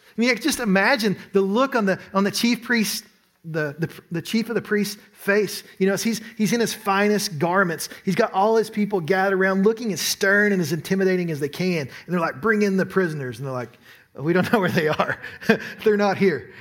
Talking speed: 230 wpm